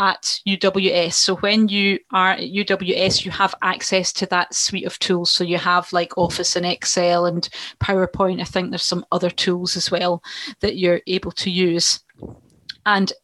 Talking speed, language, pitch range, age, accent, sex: 175 wpm, English, 185-220 Hz, 30-49, British, female